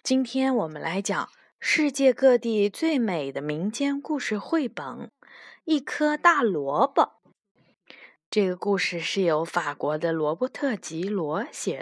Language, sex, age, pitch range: Chinese, female, 20-39, 190-290 Hz